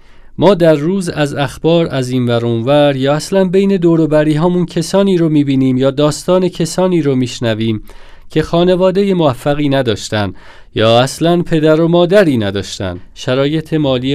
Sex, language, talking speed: male, Persian, 140 wpm